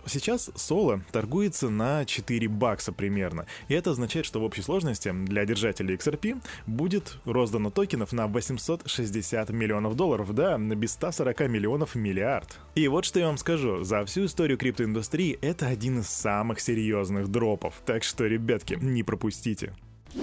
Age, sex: 20-39, male